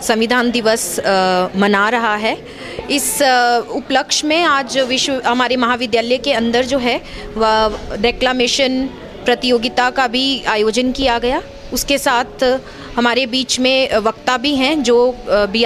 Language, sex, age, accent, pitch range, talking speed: Hindi, female, 30-49, native, 245-335 Hz, 140 wpm